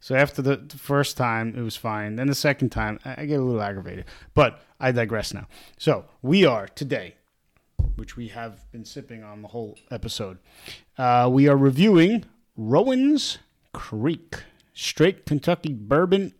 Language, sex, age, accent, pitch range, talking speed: English, male, 30-49, American, 115-145 Hz, 155 wpm